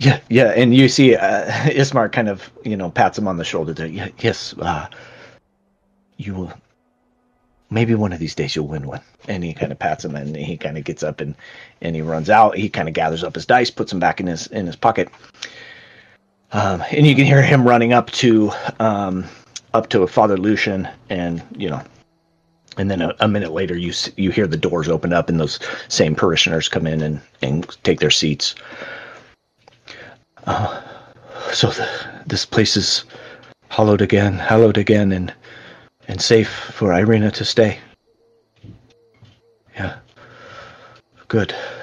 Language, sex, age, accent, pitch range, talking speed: English, male, 30-49, American, 90-125 Hz, 175 wpm